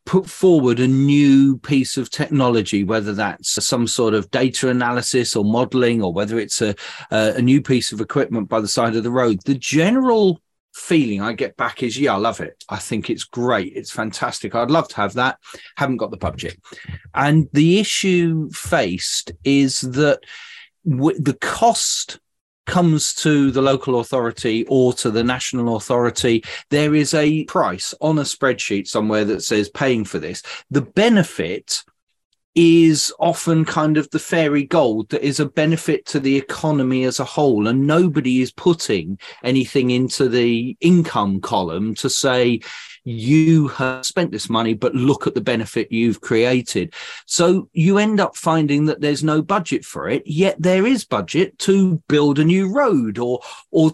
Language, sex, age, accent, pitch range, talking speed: English, male, 30-49, British, 120-165 Hz, 170 wpm